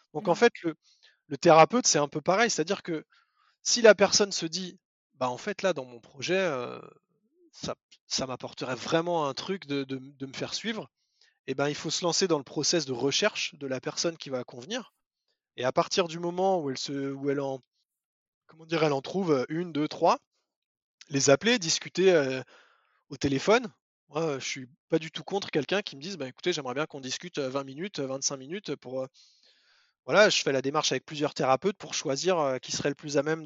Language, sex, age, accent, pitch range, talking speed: French, male, 20-39, French, 135-185 Hz, 215 wpm